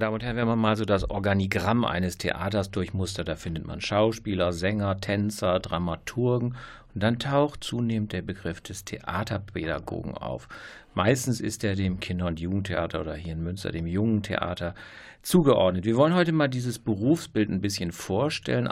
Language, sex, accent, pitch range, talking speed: German, male, German, 90-115 Hz, 165 wpm